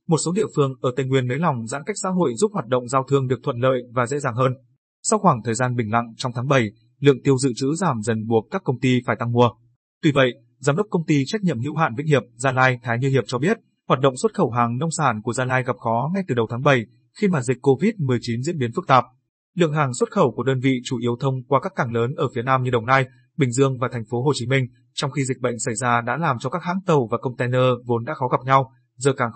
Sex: male